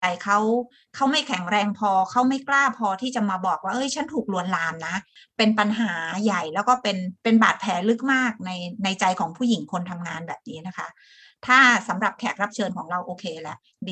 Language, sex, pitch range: Thai, female, 185-240 Hz